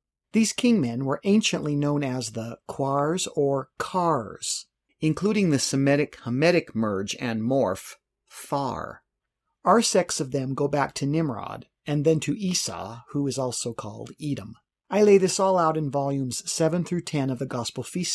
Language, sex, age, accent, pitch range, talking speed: English, male, 50-69, American, 130-175 Hz, 160 wpm